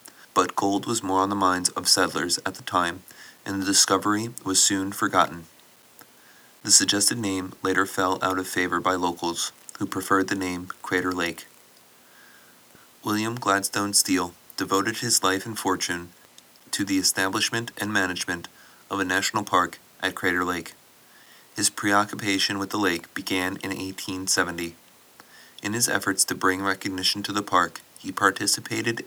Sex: male